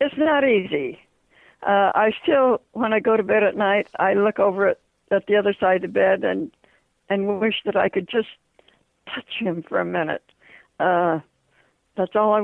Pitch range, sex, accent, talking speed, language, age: 180-210 Hz, female, American, 195 wpm, English, 60-79